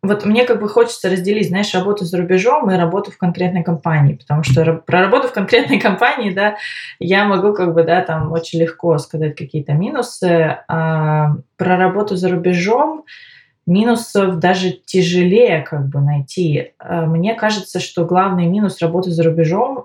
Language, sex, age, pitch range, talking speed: Russian, female, 20-39, 150-185 Hz, 160 wpm